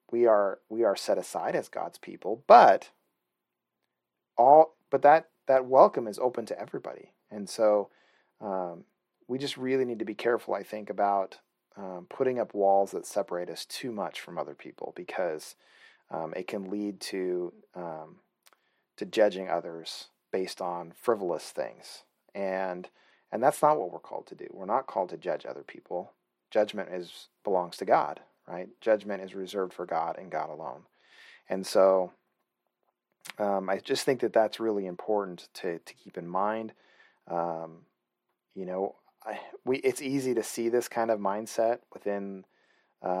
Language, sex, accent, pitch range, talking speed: English, male, American, 90-110 Hz, 165 wpm